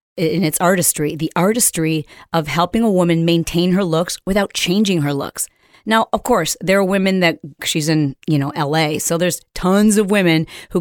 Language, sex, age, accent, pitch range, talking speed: English, female, 40-59, American, 165-215 Hz, 190 wpm